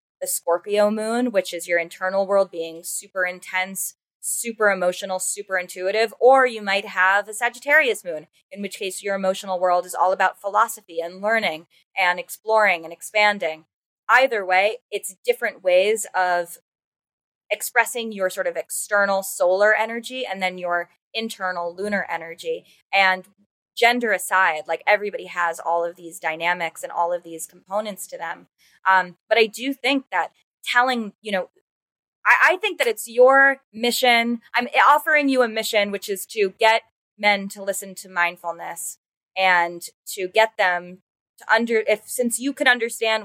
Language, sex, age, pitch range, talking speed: English, female, 20-39, 180-230 Hz, 160 wpm